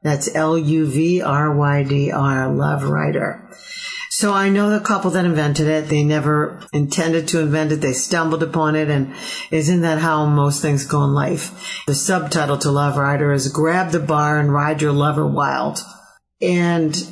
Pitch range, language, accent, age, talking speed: 145-165 Hz, English, American, 50-69, 160 wpm